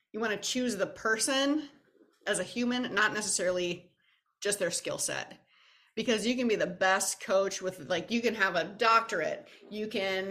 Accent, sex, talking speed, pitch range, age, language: American, female, 180 wpm, 175-225 Hz, 30-49, English